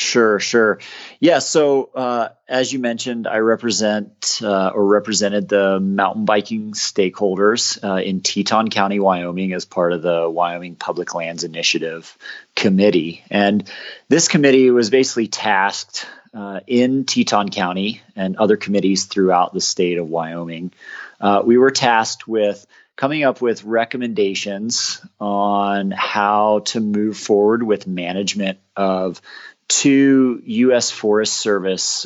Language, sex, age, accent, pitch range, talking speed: English, male, 30-49, American, 95-115 Hz, 130 wpm